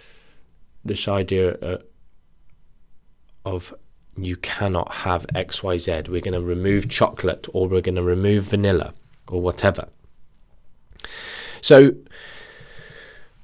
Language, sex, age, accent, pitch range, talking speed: English, male, 20-39, British, 90-145 Hz, 100 wpm